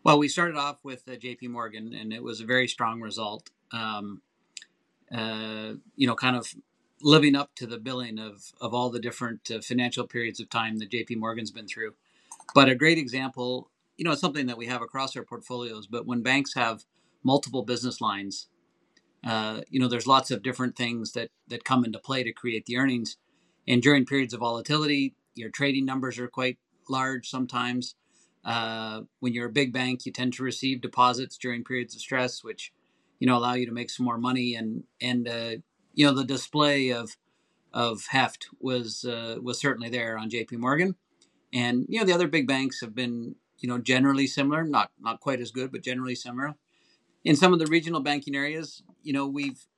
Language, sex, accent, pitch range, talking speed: English, male, American, 120-135 Hz, 200 wpm